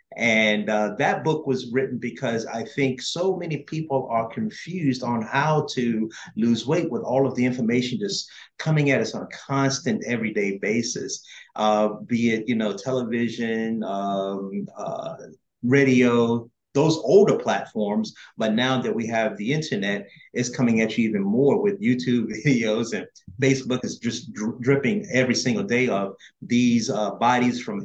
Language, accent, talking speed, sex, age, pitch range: English, American, 160 wpm, male, 30-49, 115-145 Hz